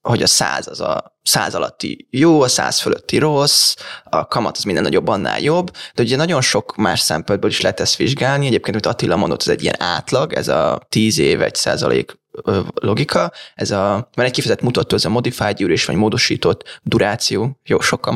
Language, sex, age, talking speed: Hungarian, male, 20-39, 195 wpm